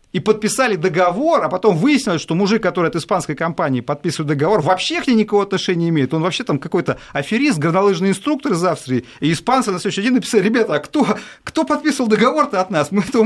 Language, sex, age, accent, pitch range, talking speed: Russian, male, 30-49, native, 145-215 Hz, 205 wpm